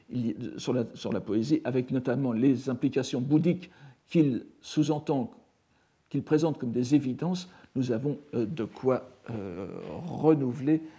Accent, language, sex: French, French, male